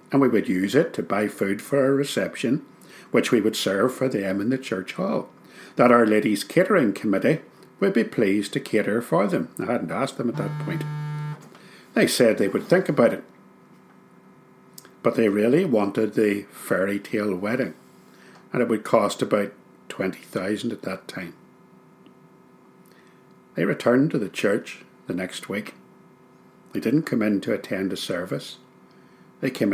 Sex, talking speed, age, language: male, 165 wpm, 60-79, English